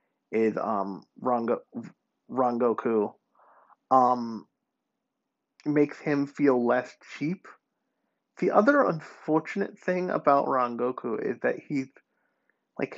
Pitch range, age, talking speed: 130-205 Hz, 30-49, 90 wpm